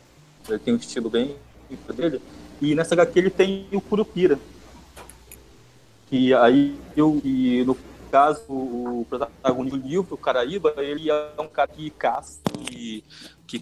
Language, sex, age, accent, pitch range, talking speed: Portuguese, male, 20-39, Brazilian, 110-160 Hz, 140 wpm